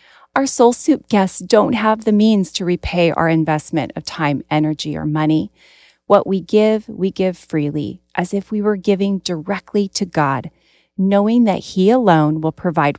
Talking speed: 170 wpm